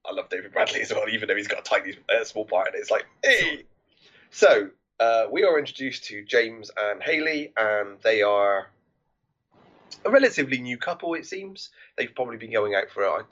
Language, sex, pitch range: English, male, 110-175 Hz